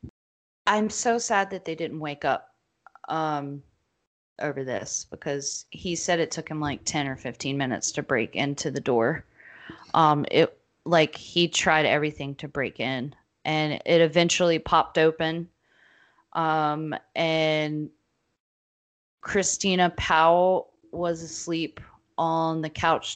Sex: female